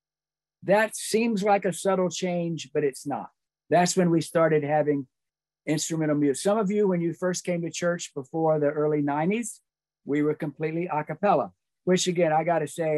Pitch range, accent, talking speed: 150-185 Hz, American, 175 wpm